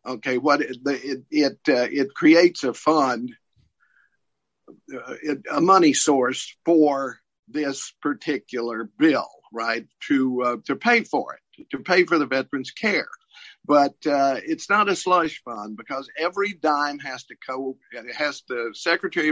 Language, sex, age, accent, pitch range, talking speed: English, male, 50-69, American, 130-190 Hz, 150 wpm